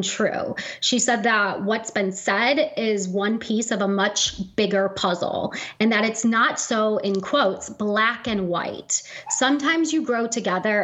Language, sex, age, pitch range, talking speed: English, female, 30-49, 200-250 Hz, 160 wpm